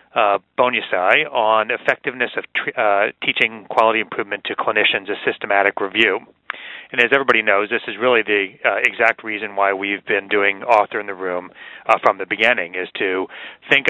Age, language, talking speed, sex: 40-59, English, 175 wpm, male